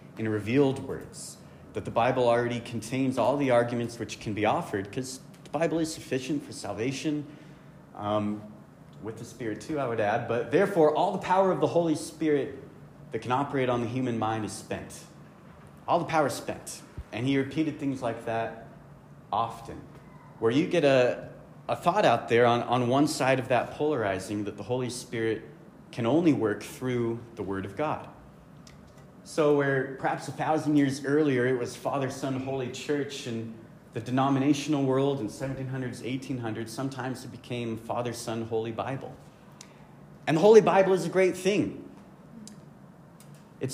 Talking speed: 170 wpm